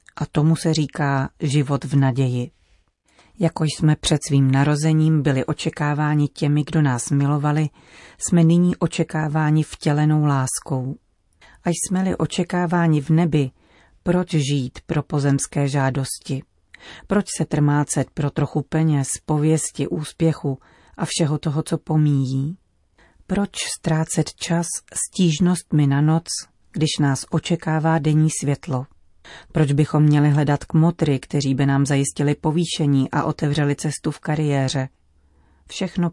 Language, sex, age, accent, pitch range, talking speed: Czech, female, 40-59, native, 140-160 Hz, 125 wpm